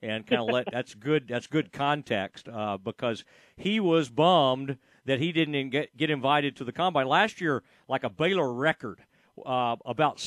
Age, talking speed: 50-69, 175 wpm